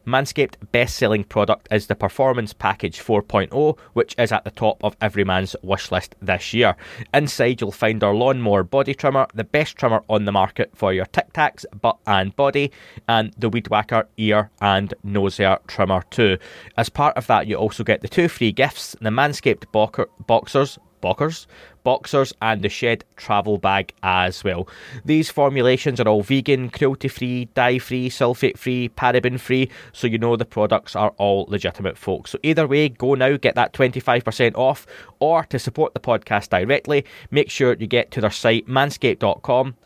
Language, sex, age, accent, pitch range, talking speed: English, male, 20-39, British, 105-135 Hz, 170 wpm